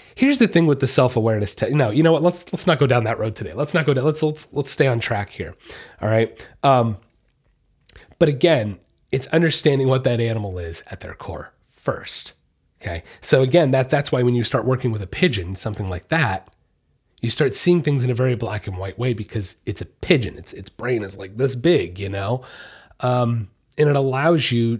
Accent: American